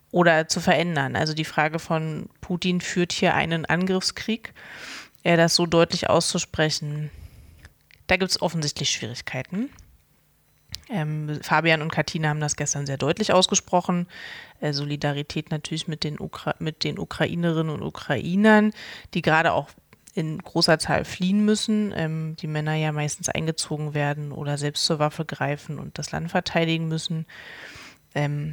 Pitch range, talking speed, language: 150-180 Hz, 145 wpm, German